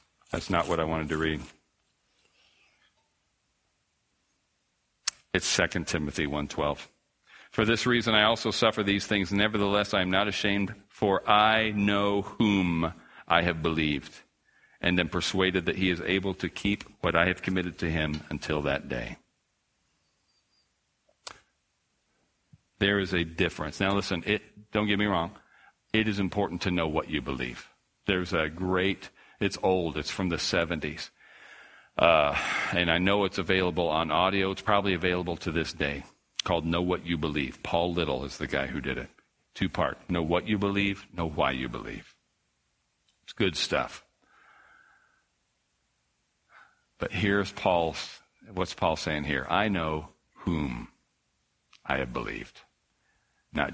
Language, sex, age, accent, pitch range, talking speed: English, male, 50-69, American, 80-100 Hz, 145 wpm